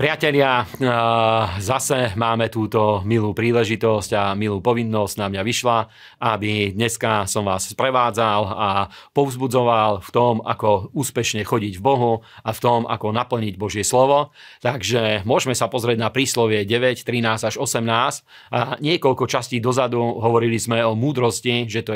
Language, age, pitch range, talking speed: Slovak, 40-59, 115-130 Hz, 145 wpm